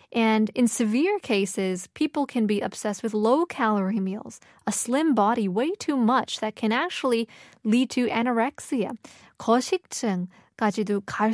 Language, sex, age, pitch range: Korean, female, 20-39, 205-255 Hz